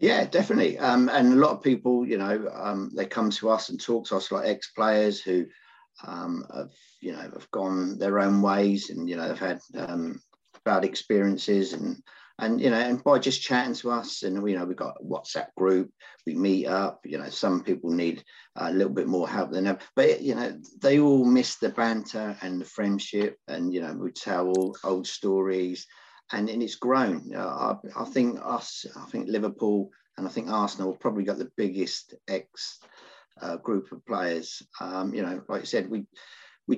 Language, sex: English, male